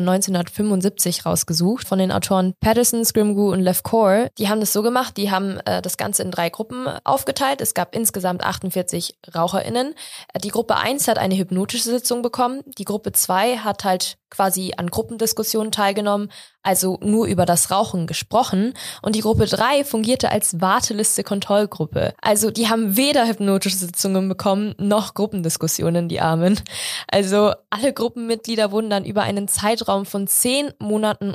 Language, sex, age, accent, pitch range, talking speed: German, female, 20-39, German, 190-225 Hz, 155 wpm